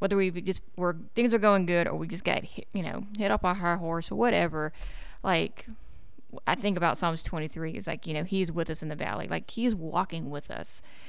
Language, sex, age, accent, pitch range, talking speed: English, female, 20-39, American, 160-195 Hz, 235 wpm